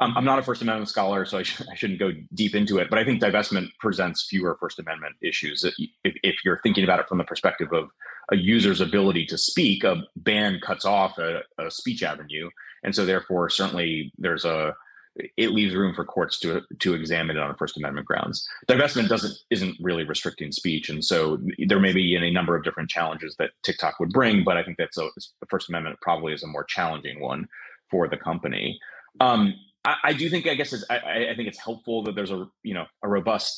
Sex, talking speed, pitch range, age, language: male, 215 wpm, 85-100 Hz, 30-49, English